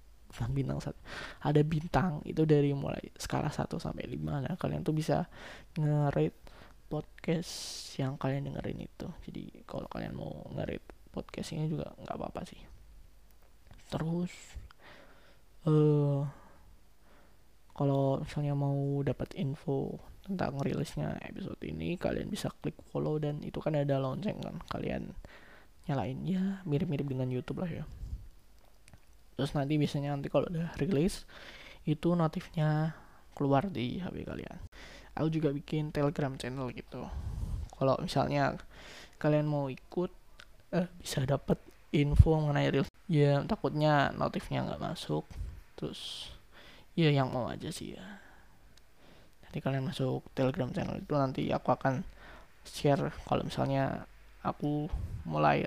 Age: 20-39